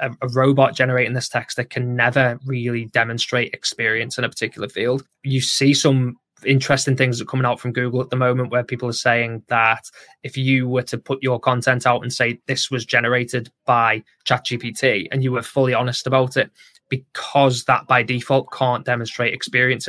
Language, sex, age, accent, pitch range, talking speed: English, male, 20-39, British, 120-135 Hz, 190 wpm